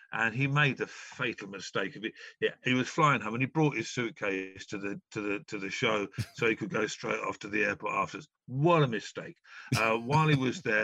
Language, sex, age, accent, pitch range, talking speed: English, male, 50-69, British, 110-135 Hz, 240 wpm